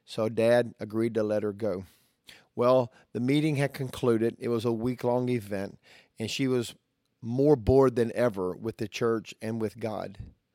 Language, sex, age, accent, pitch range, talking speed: English, male, 50-69, American, 110-125 Hz, 170 wpm